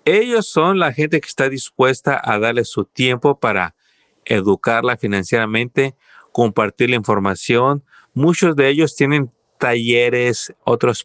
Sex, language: male, Spanish